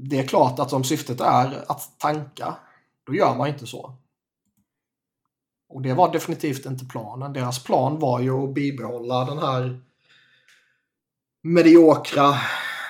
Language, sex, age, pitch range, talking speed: Swedish, male, 30-49, 125-135 Hz, 135 wpm